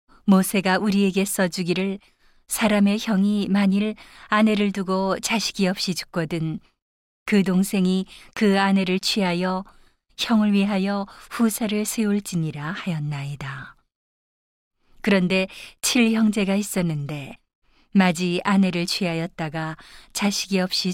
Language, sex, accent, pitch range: Korean, female, native, 175-205 Hz